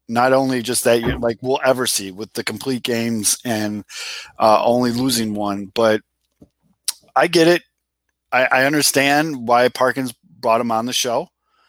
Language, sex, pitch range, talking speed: English, male, 105-130 Hz, 165 wpm